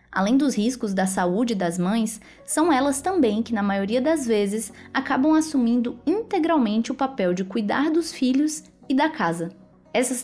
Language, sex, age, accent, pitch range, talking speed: Portuguese, female, 20-39, Brazilian, 190-285 Hz, 165 wpm